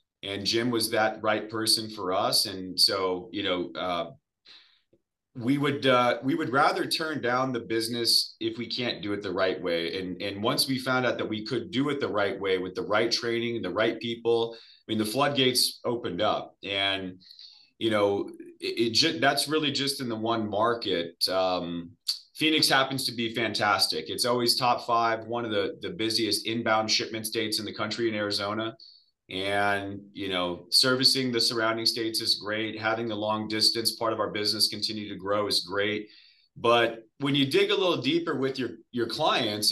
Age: 30-49